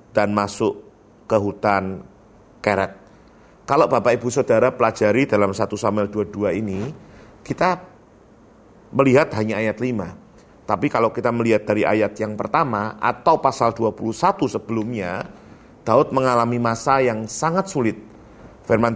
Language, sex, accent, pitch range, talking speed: Indonesian, male, native, 110-140 Hz, 125 wpm